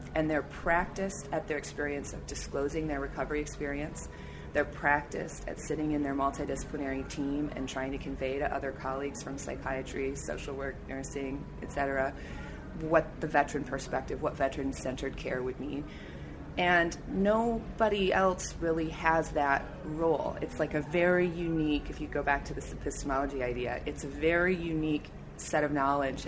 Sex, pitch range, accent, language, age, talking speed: female, 135-160 Hz, American, English, 30-49, 155 wpm